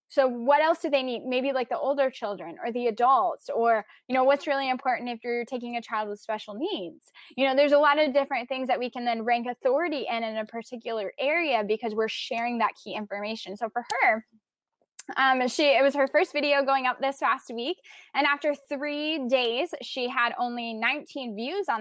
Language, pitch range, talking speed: English, 225-275 Hz, 215 wpm